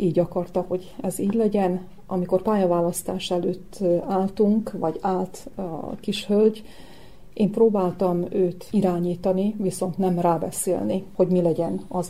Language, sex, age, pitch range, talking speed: Hungarian, female, 40-59, 175-195 Hz, 130 wpm